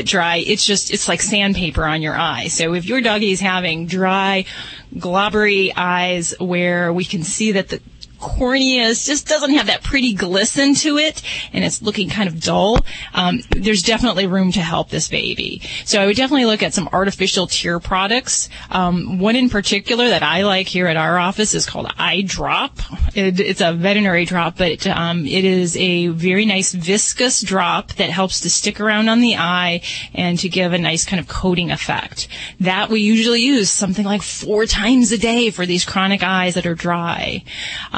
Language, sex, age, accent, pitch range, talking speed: English, female, 30-49, American, 175-210 Hz, 190 wpm